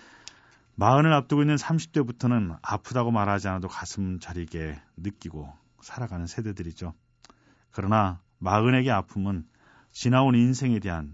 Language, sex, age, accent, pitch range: Korean, male, 40-59, native, 85-120 Hz